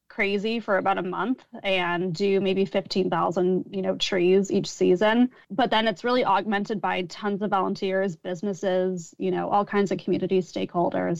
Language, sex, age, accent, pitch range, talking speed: English, female, 20-39, American, 185-215 Hz, 165 wpm